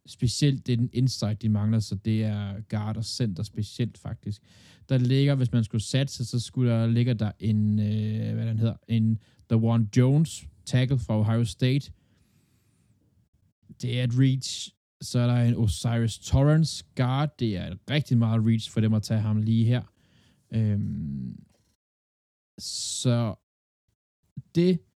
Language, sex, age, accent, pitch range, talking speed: Danish, male, 20-39, native, 105-130 Hz, 150 wpm